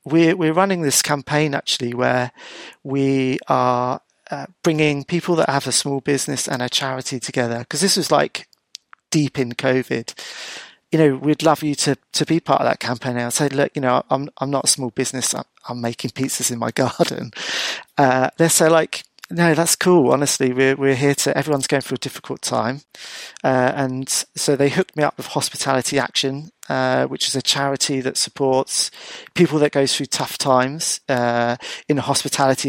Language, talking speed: English, 190 wpm